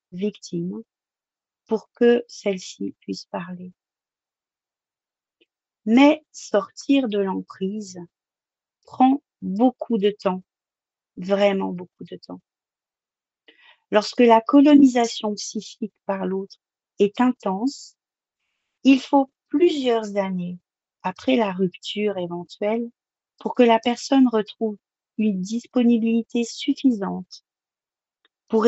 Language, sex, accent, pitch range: French, female, French, 190-235 Hz